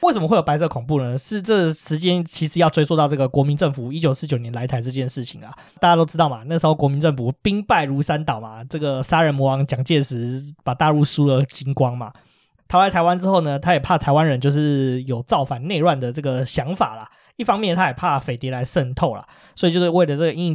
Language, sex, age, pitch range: Chinese, male, 20-39, 135-175 Hz